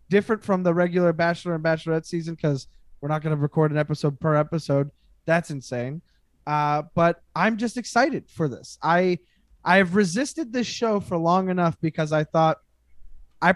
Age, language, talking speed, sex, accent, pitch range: 20-39, English, 175 wpm, male, American, 160-190 Hz